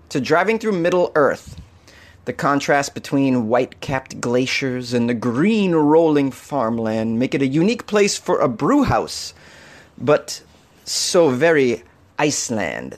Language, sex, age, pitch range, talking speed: English, male, 30-49, 120-165 Hz, 130 wpm